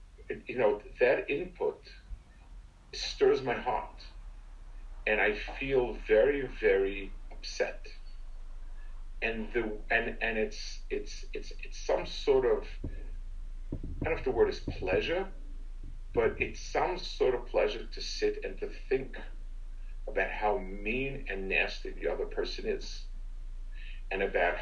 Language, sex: English, male